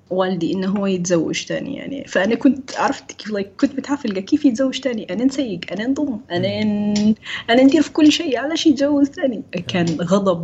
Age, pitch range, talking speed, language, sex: 20-39, 180-250 Hz, 185 wpm, Arabic, female